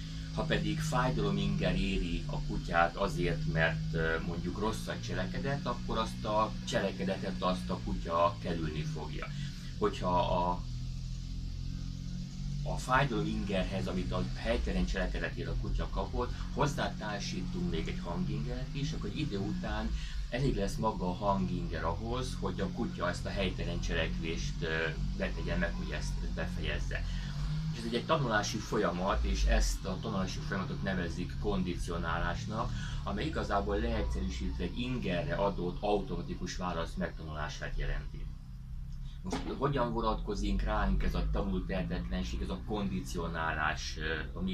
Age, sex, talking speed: 30-49, male, 125 wpm